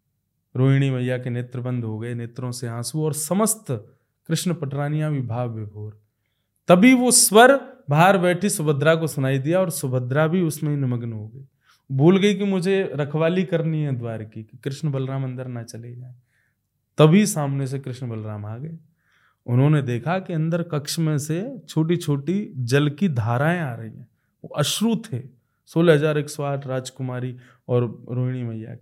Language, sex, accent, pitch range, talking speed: Hindi, male, native, 125-155 Hz, 160 wpm